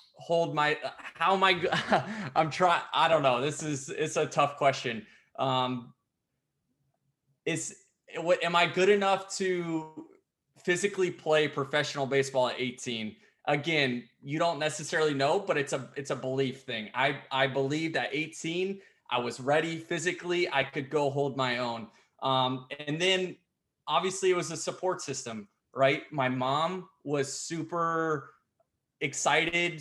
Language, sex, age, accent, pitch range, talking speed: English, male, 20-39, American, 130-155 Hz, 145 wpm